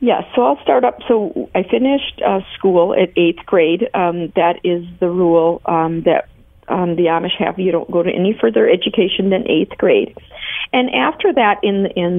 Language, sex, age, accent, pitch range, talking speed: English, female, 50-69, American, 170-220 Hz, 190 wpm